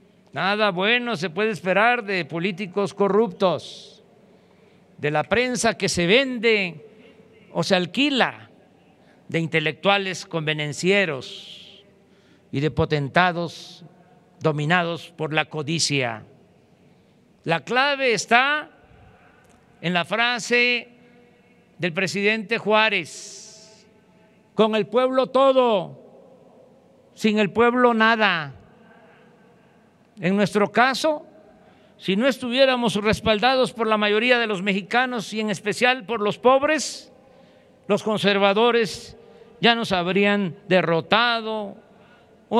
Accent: Mexican